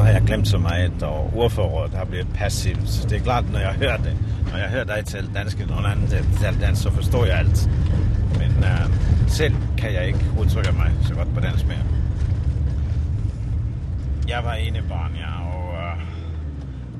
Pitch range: 75-105 Hz